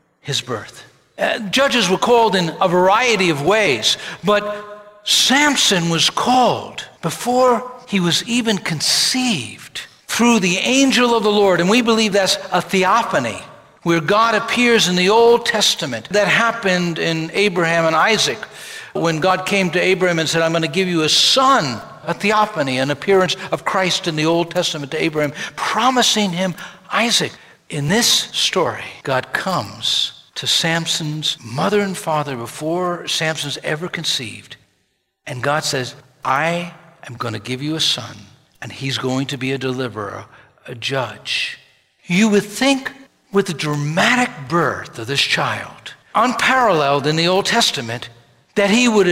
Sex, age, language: male, 60-79, English